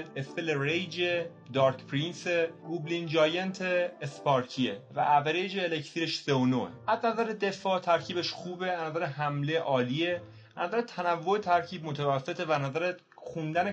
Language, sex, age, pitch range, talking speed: Persian, male, 30-49, 130-175 Hz, 115 wpm